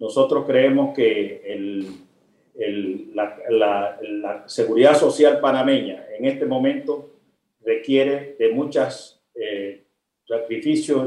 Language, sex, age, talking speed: Spanish, male, 50-69, 105 wpm